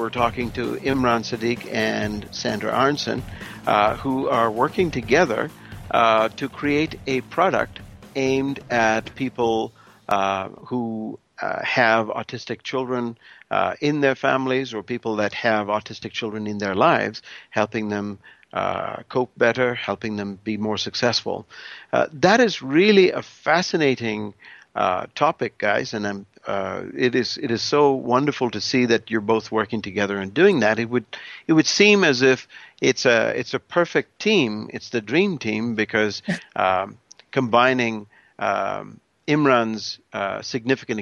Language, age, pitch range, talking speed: English, 60-79, 105-135 Hz, 155 wpm